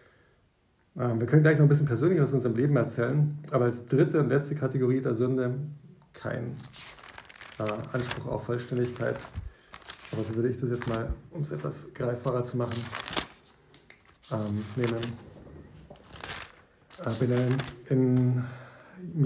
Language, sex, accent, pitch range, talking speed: German, male, German, 120-140 Hz, 130 wpm